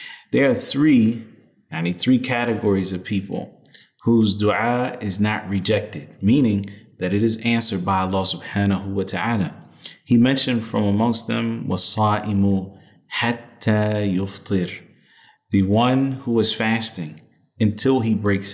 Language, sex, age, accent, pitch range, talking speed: English, male, 30-49, American, 100-115 Hz, 130 wpm